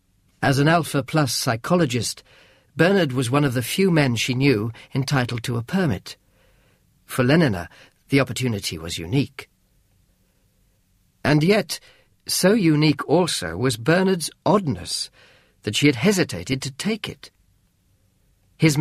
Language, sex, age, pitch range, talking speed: English, male, 50-69, 100-150 Hz, 125 wpm